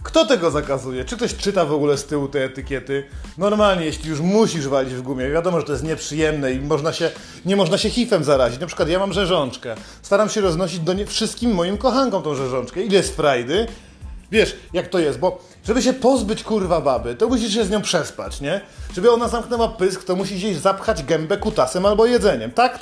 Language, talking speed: Polish, 210 wpm